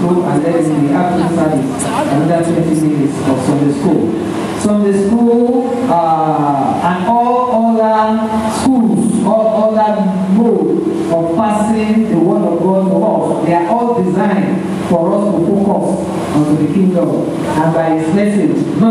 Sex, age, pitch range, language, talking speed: male, 50-69, 170-220 Hz, English, 145 wpm